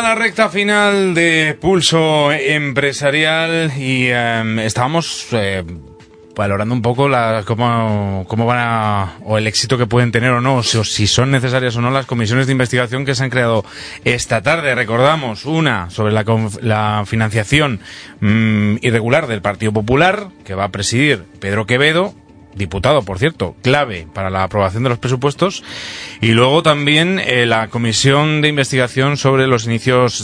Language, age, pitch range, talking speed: Spanish, 30-49, 110-140 Hz, 165 wpm